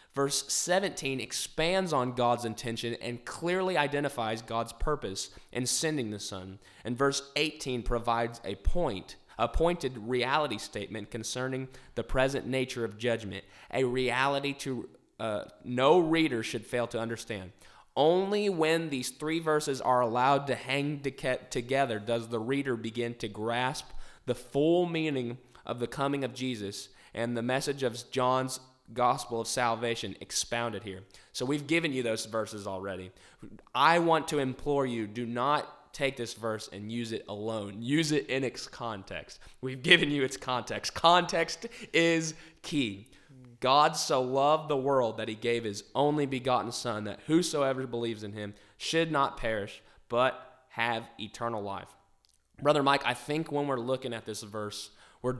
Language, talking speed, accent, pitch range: English, 155 wpm, American, 115-140 Hz